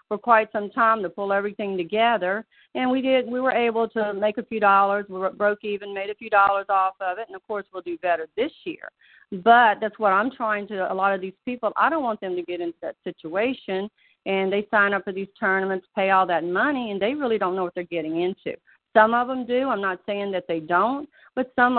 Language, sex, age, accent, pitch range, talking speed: English, female, 40-59, American, 190-240 Hz, 245 wpm